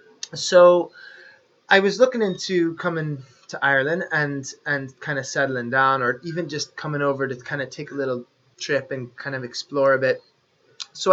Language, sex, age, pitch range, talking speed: English, male, 20-39, 135-175 Hz, 180 wpm